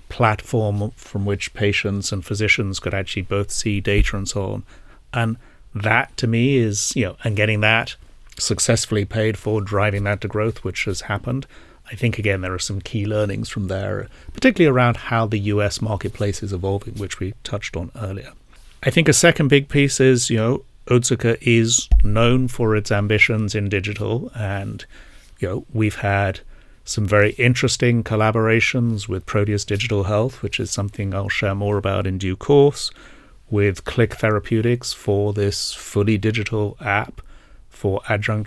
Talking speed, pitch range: 165 wpm, 100-120 Hz